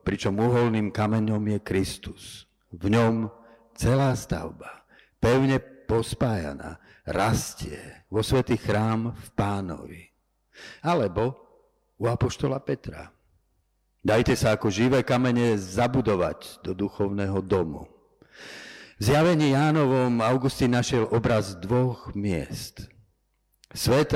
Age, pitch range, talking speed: 50-69, 100-125 Hz, 95 wpm